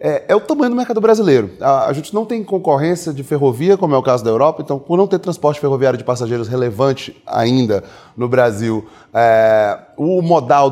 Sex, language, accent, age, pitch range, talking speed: male, Portuguese, Brazilian, 20-39, 140-195 Hz, 185 wpm